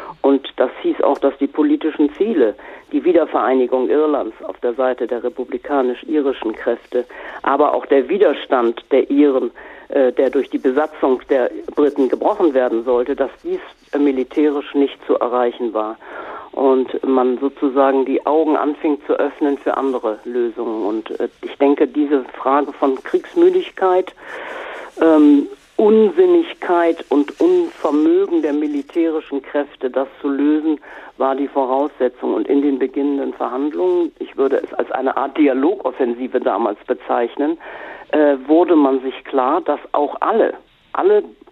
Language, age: German, 50-69